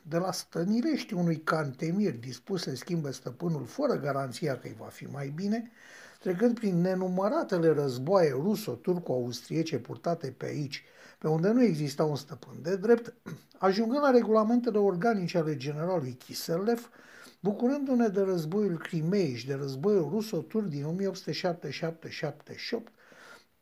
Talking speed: 130 wpm